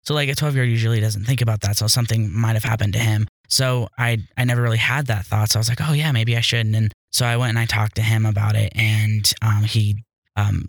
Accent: American